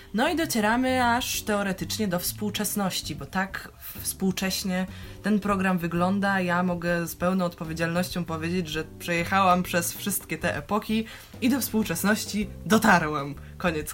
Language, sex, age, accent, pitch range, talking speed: Polish, female, 20-39, native, 165-205 Hz, 130 wpm